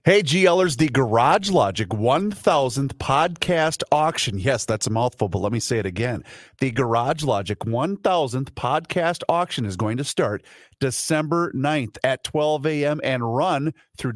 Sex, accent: male, American